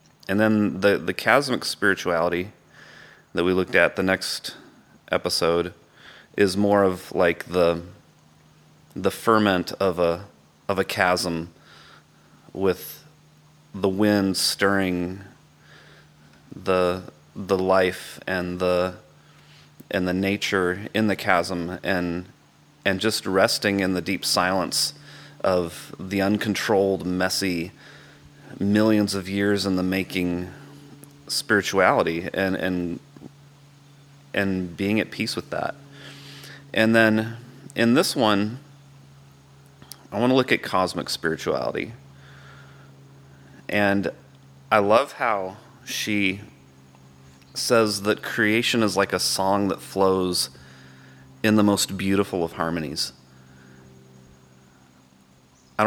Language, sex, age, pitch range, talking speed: English, male, 30-49, 75-105 Hz, 105 wpm